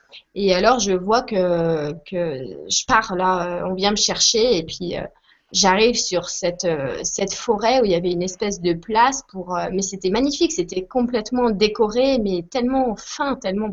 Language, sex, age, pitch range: French, female, 20-39, 185-245 Hz